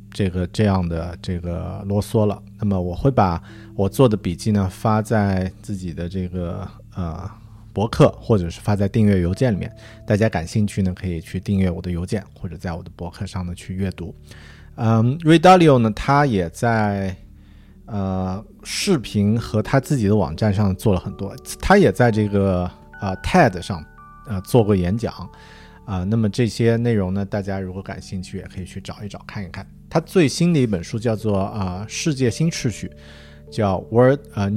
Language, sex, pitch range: Chinese, male, 90-110 Hz